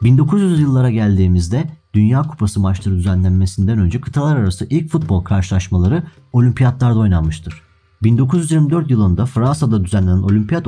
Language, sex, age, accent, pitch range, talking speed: Turkish, male, 40-59, native, 95-130 Hz, 110 wpm